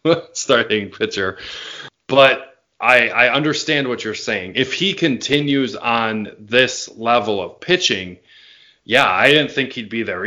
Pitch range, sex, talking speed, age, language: 115-140 Hz, male, 140 wpm, 20-39, English